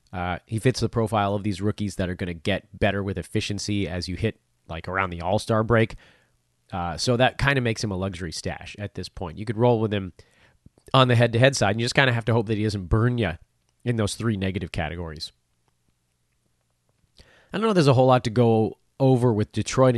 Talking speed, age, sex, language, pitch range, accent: 230 wpm, 30-49, male, English, 95-120 Hz, American